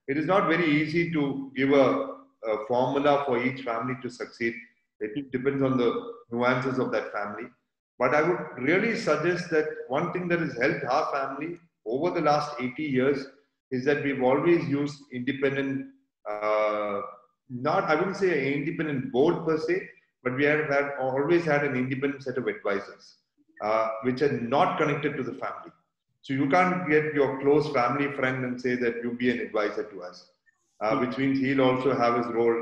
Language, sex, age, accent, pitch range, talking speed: English, male, 40-59, Indian, 125-150 Hz, 185 wpm